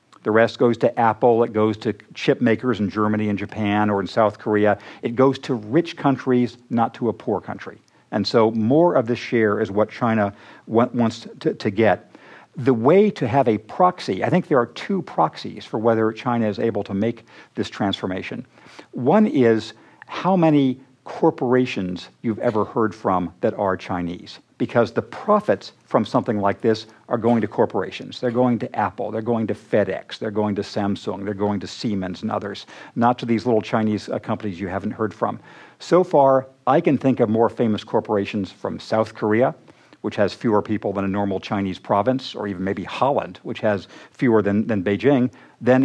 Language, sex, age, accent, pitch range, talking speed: English, male, 50-69, American, 105-125 Hz, 195 wpm